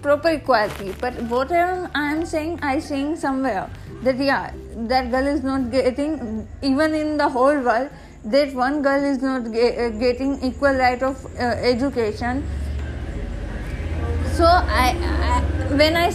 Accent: native